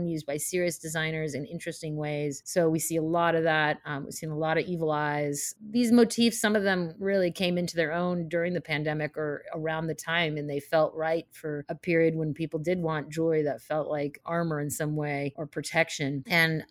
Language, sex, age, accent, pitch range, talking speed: English, female, 30-49, American, 150-175 Hz, 220 wpm